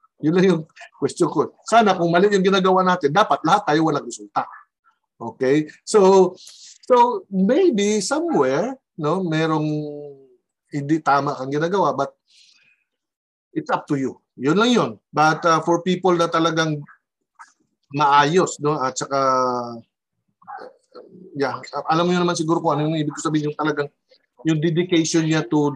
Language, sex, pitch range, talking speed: Filipino, male, 145-190 Hz, 150 wpm